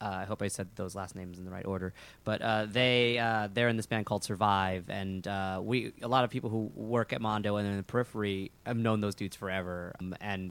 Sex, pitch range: male, 95-110 Hz